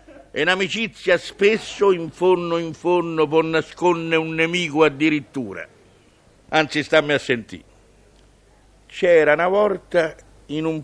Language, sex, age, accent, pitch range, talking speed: Italian, male, 60-79, native, 150-210 Hz, 115 wpm